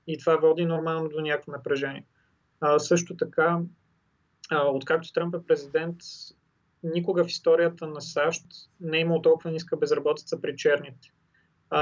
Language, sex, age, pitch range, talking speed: English, male, 30-49, 155-185 Hz, 140 wpm